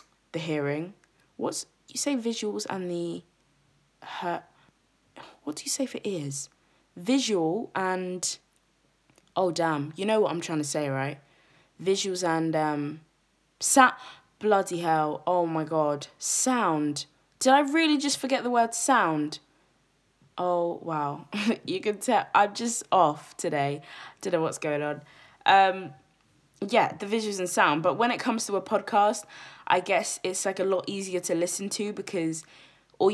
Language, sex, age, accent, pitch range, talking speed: English, female, 20-39, British, 155-190 Hz, 150 wpm